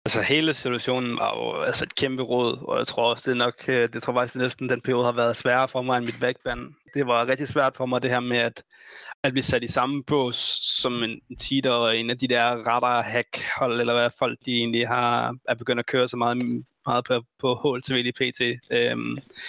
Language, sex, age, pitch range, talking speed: Danish, male, 20-39, 115-130 Hz, 230 wpm